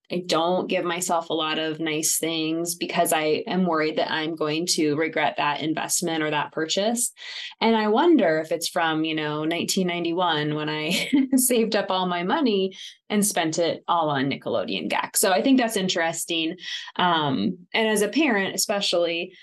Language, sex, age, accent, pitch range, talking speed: English, female, 20-39, American, 160-200 Hz, 175 wpm